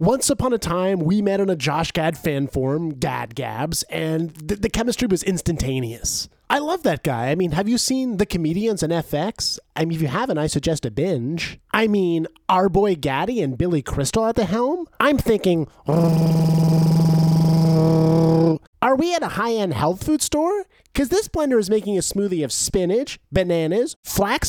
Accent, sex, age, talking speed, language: American, male, 30-49, 185 wpm, English